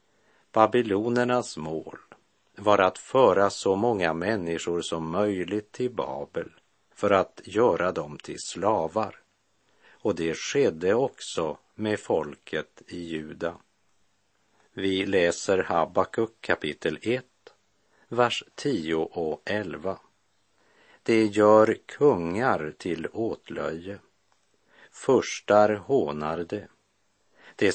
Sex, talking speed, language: male, 95 wpm, Swedish